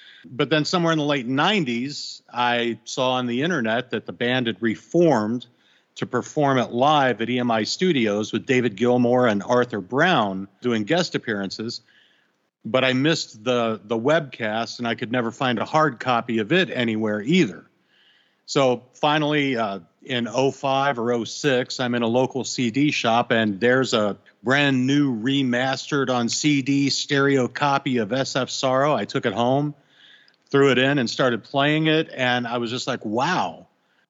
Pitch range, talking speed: 115-140 Hz, 165 wpm